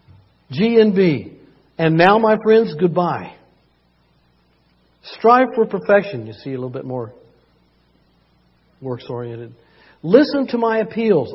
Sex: male